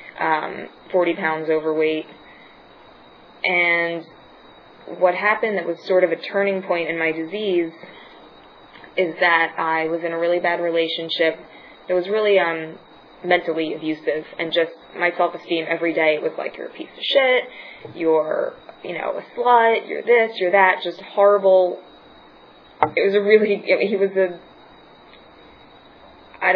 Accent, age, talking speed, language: American, 20-39, 145 wpm, English